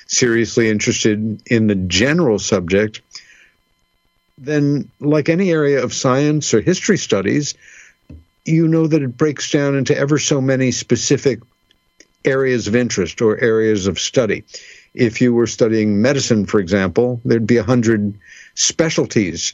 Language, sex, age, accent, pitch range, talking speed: English, male, 60-79, American, 105-135 Hz, 140 wpm